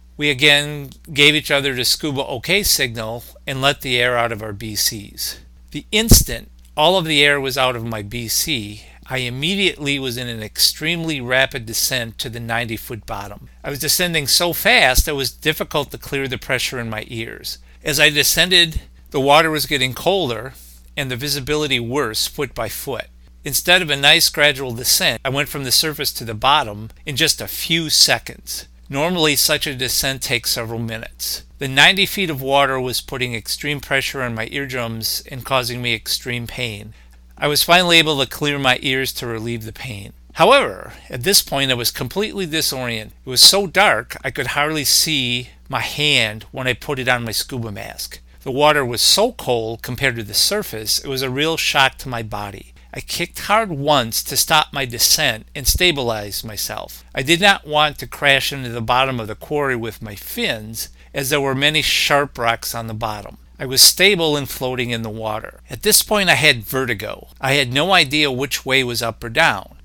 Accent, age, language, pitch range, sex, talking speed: American, 50-69, English, 115-150 Hz, male, 195 wpm